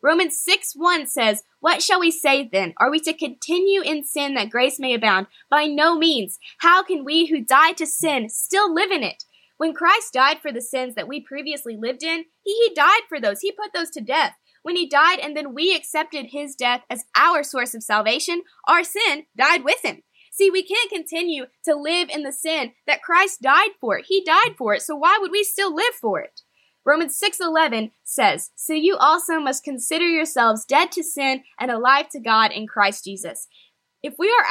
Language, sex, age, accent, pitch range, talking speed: English, female, 10-29, American, 250-340 Hz, 205 wpm